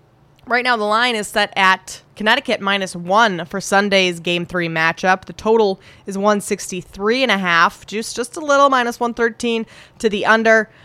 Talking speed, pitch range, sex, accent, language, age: 185 wpm, 180-215 Hz, female, American, English, 20-39